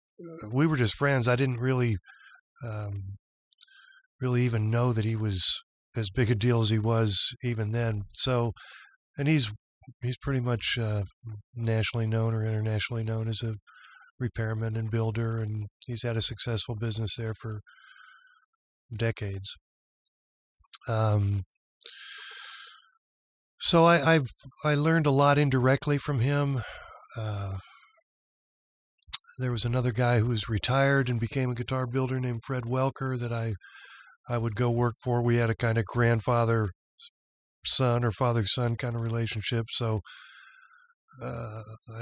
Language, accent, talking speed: English, American, 140 wpm